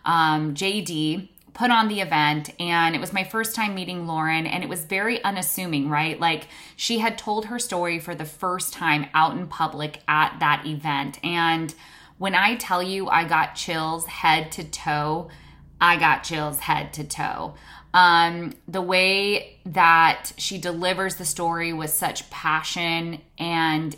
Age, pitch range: 20-39, 160-185 Hz